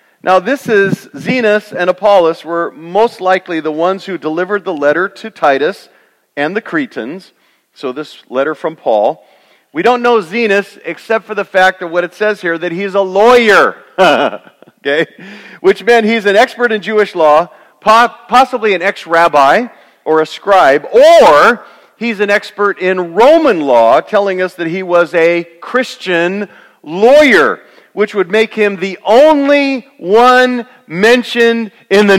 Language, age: English, 40-59